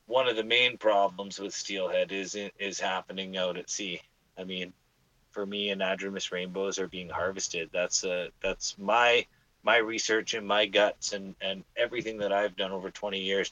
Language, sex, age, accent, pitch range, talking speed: English, male, 30-49, American, 95-105 Hz, 180 wpm